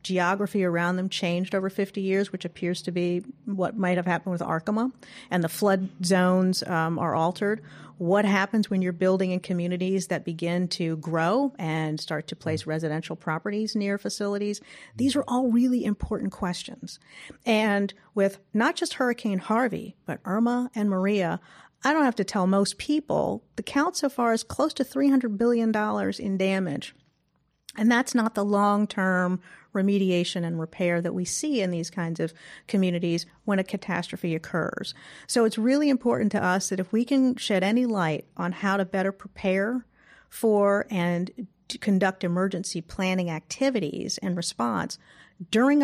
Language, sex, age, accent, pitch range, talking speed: English, female, 40-59, American, 175-215 Hz, 160 wpm